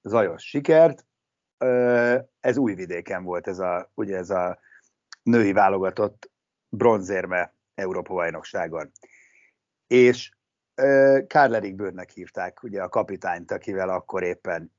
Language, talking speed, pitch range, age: Hungarian, 100 wpm, 105-130 Hz, 60-79